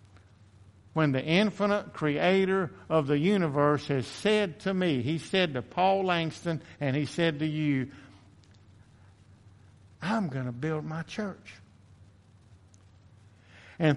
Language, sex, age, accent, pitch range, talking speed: English, male, 60-79, American, 100-165 Hz, 120 wpm